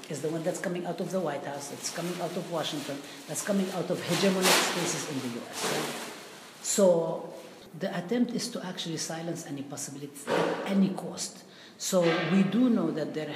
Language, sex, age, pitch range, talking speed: English, female, 50-69, 140-170 Hz, 190 wpm